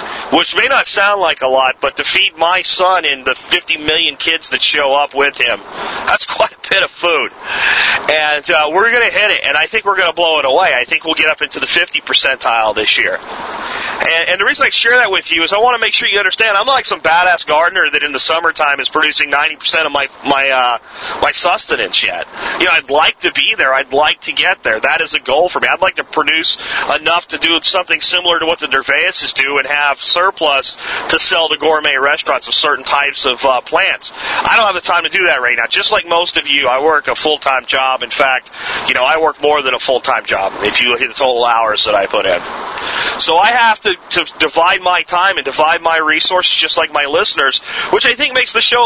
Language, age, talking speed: English, 40-59, 245 wpm